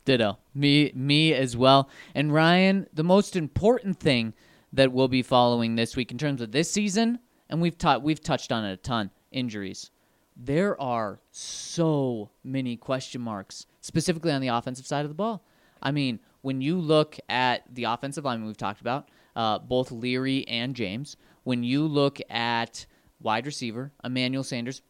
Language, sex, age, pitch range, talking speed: English, male, 20-39, 120-165 Hz, 170 wpm